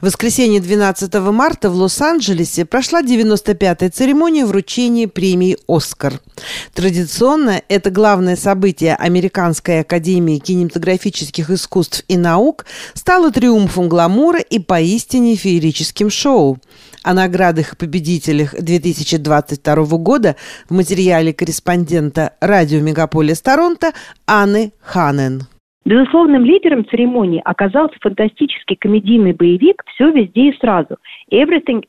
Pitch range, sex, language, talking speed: 180-255 Hz, female, Russian, 100 wpm